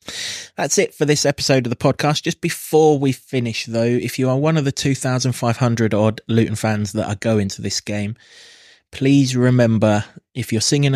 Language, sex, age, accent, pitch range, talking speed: English, male, 20-39, British, 100-120 Hz, 185 wpm